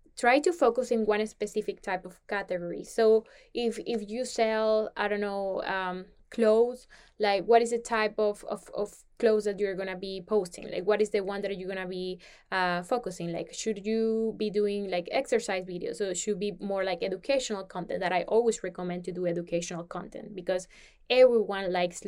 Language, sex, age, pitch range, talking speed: English, female, 10-29, 195-230 Hz, 195 wpm